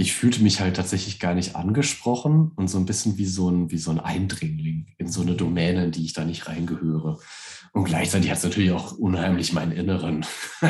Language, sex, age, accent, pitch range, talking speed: German, male, 30-49, German, 90-115 Hz, 200 wpm